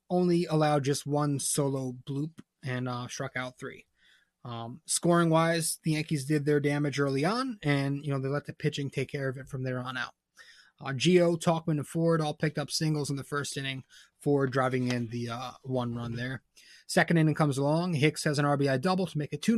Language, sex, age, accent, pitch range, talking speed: English, male, 20-39, American, 135-165 Hz, 215 wpm